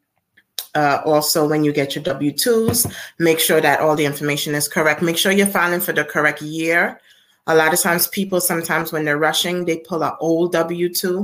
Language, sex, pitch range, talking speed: English, female, 150-170 Hz, 200 wpm